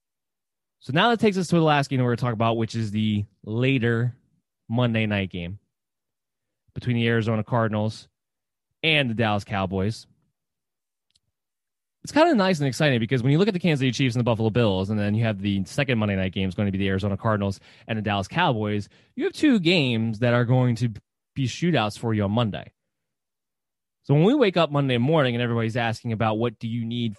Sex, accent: male, American